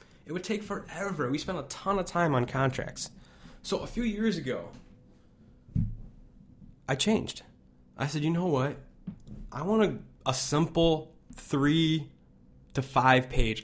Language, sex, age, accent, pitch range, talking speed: English, male, 20-39, American, 110-155 Hz, 145 wpm